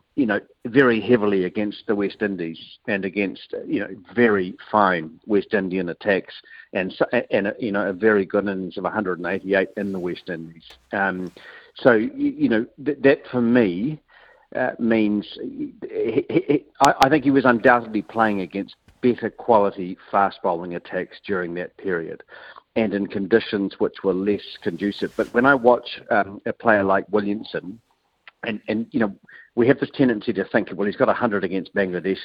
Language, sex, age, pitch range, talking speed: English, male, 50-69, 95-115 Hz, 170 wpm